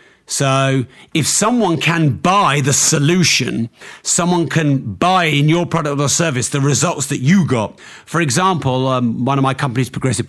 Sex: male